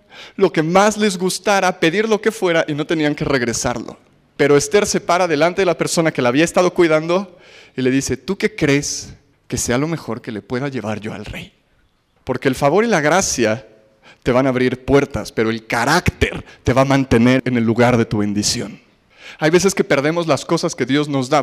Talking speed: 220 wpm